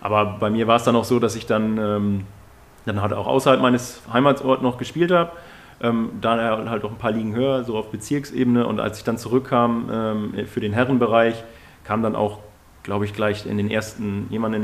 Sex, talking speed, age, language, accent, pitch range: male, 215 wpm, 30-49, German, German, 105-125 Hz